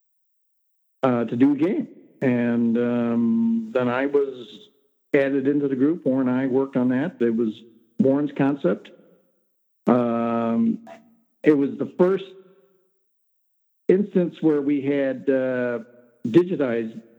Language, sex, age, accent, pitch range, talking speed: English, male, 50-69, American, 130-195 Hz, 120 wpm